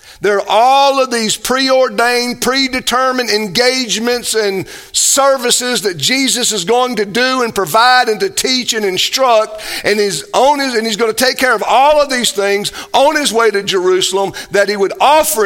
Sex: male